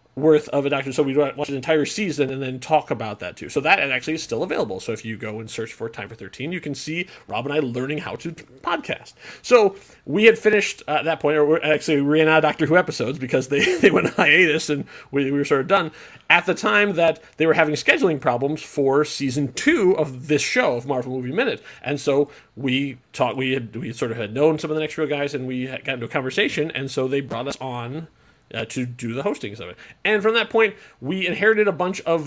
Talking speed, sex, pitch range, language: 245 wpm, male, 130-160 Hz, English